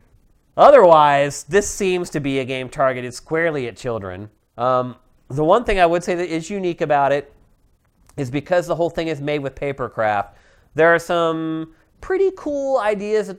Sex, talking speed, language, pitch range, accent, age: male, 180 wpm, English, 135-180 Hz, American, 30-49